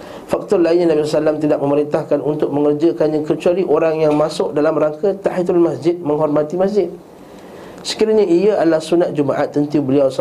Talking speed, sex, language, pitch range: 145 wpm, male, Malay, 140-170 Hz